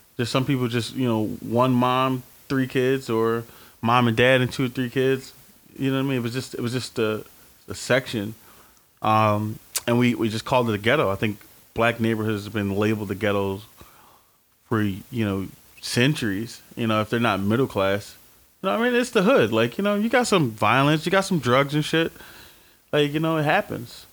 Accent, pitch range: American, 105-125 Hz